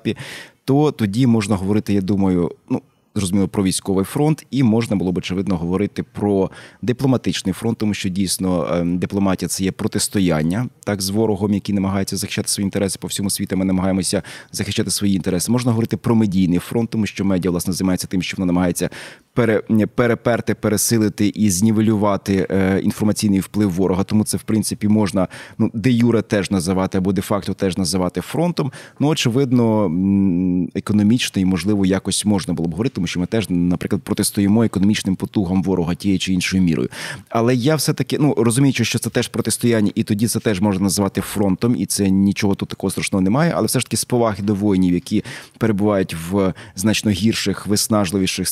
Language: Ukrainian